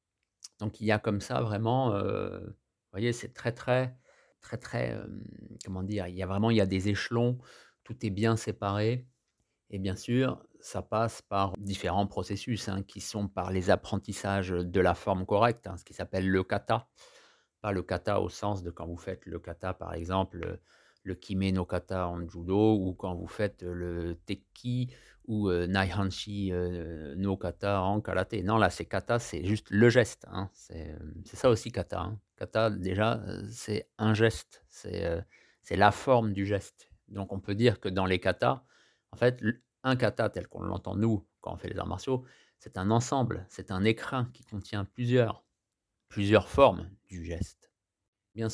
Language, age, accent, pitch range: French, 50-69, French, 95-115 Hz